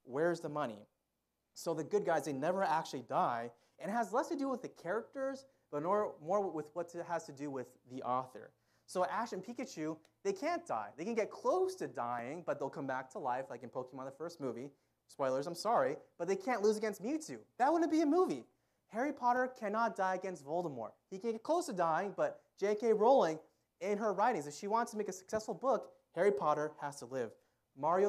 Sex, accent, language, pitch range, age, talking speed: male, American, English, 145-215 Hz, 30-49, 220 wpm